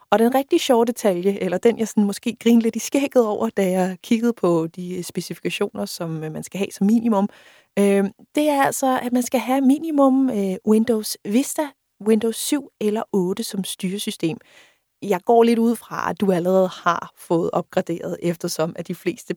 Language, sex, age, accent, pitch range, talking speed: Danish, female, 30-49, native, 180-235 Hz, 185 wpm